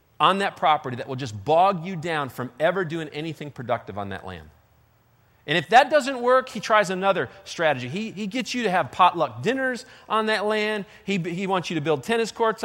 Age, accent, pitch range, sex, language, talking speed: 40-59, American, 135-205 Hz, male, English, 215 wpm